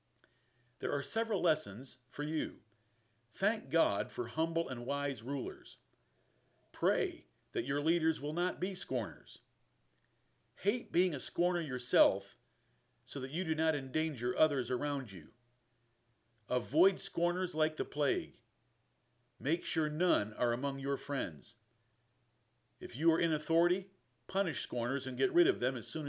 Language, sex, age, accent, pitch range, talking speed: English, male, 50-69, American, 120-160 Hz, 140 wpm